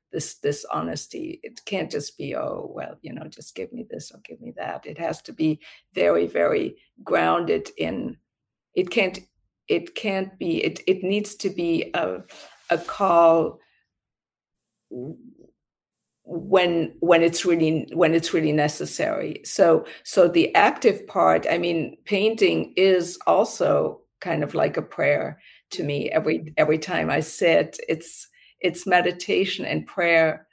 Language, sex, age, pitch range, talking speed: English, female, 50-69, 165-270 Hz, 145 wpm